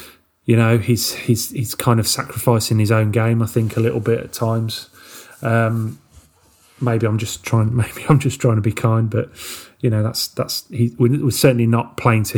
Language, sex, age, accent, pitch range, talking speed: English, male, 30-49, British, 110-125 Hz, 200 wpm